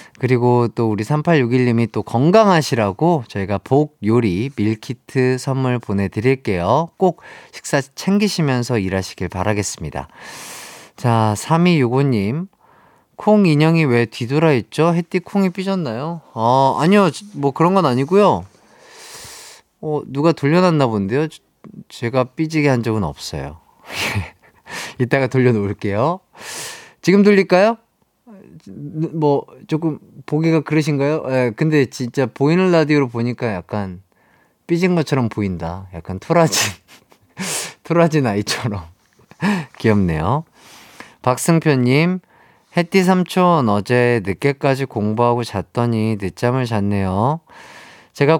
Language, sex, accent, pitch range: Korean, male, native, 110-165 Hz